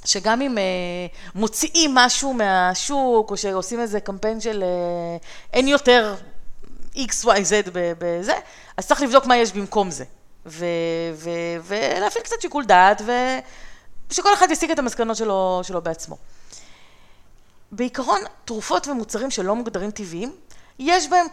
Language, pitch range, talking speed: Hebrew, 180-260 Hz, 125 wpm